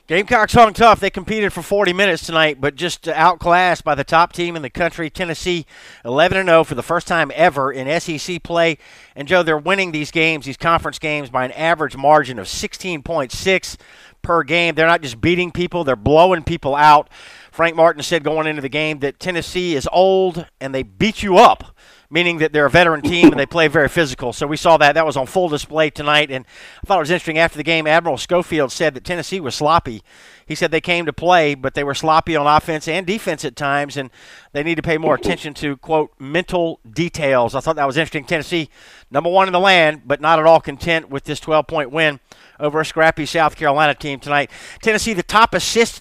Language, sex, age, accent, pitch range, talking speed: English, male, 50-69, American, 150-175 Hz, 215 wpm